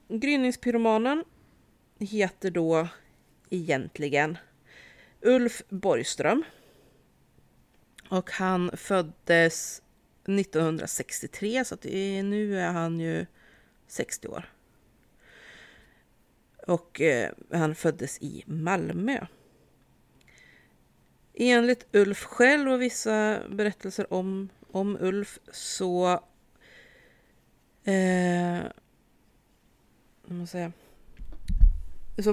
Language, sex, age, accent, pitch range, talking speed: Swedish, female, 30-49, native, 160-205 Hz, 70 wpm